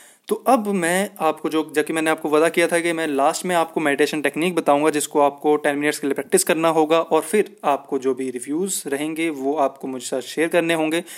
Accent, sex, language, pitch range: native, male, Hindi, 145-195 Hz